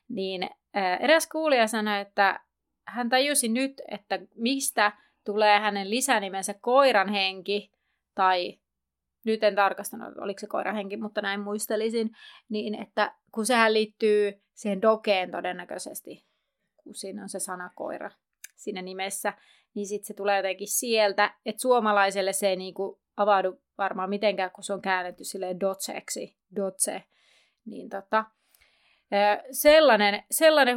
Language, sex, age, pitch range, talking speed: Finnish, female, 30-49, 195-245 Hz, 130 wpm